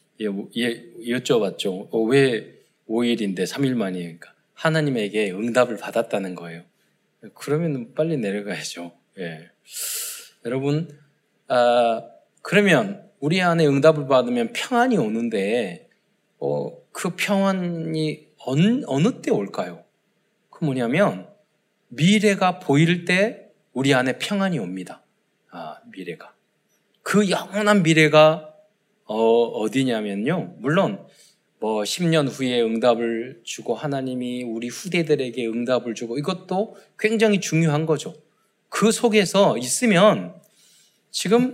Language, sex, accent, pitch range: Korean, male, native, 125-205 Hz